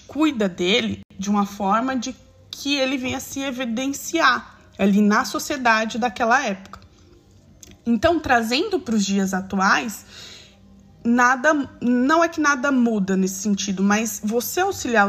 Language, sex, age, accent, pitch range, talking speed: Portuguese, female, 20-39, Brazilian, 190-245 Hz, 130 wpm